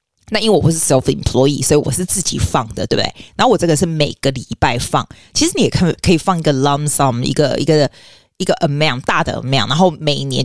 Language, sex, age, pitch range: Chinese, female, 20-39, 140-190 Hz